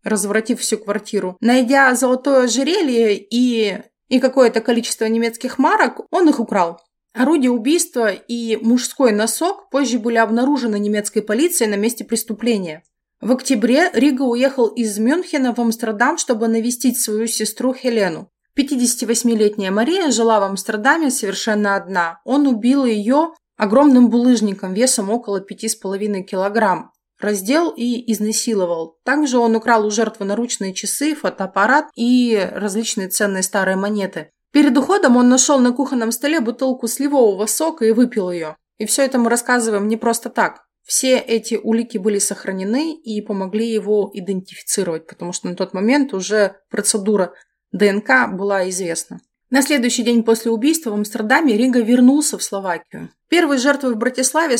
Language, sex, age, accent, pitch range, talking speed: Russian, female, 30-49, native, 210-255 Hz, 140 wpm